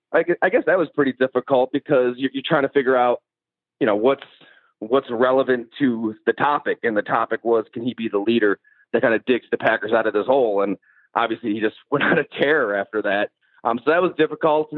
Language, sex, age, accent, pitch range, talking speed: English, male, 30-49, American, 115-145 Hz, 220 wpm